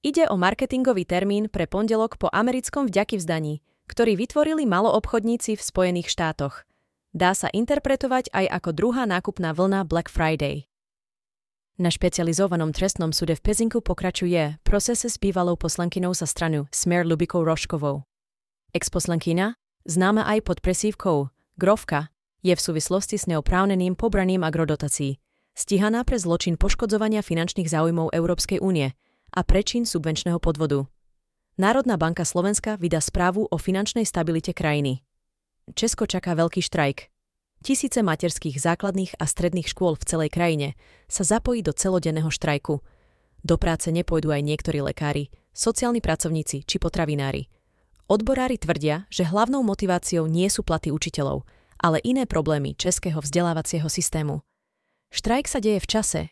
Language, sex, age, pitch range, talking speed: Slovak, female, 30-49, 160-205 Hz, 130 wpm